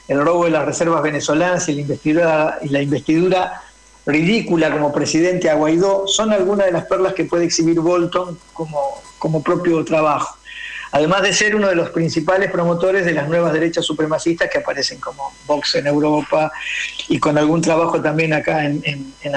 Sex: male